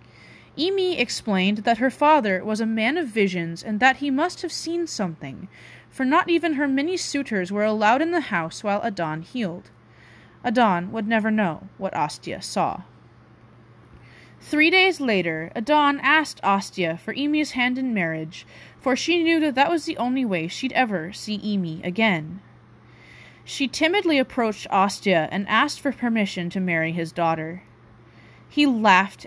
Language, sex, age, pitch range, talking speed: English, female, 20-39, 185-280 Hz, 160 wpm